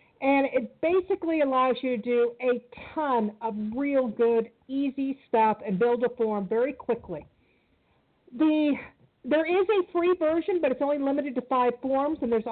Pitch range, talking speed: 235-290 Hz, 170 wpm